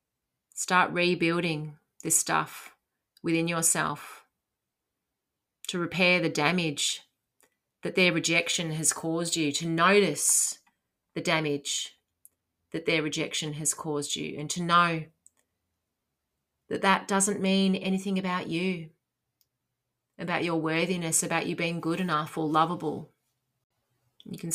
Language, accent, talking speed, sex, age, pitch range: English, Australian, 115 wpm, female, 30-49, 155-180 Hz